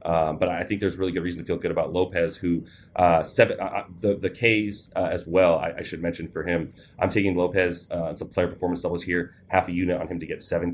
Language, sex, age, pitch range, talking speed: English, male, 30-49, 80-95 Hz, 255 wpm